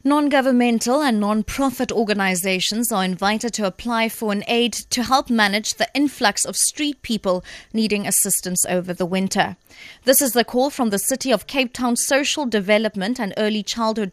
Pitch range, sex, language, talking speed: 200-250 Hz, female, English, 165 wpm